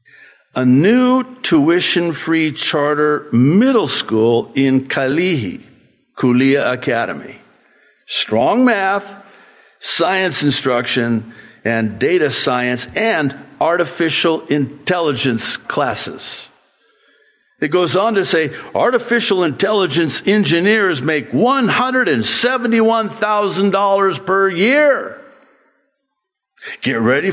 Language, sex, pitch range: English, male, 140-230 Hz